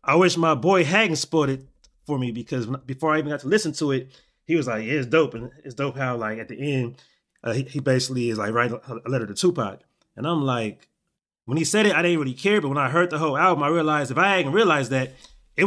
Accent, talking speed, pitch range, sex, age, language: American, 265 wpm, 130-165 Hz, male, 20-39, English